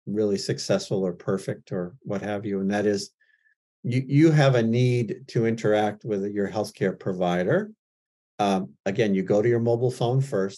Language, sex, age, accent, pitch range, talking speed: English, male, 50-69, American, 105-140 Hz, 175 wpm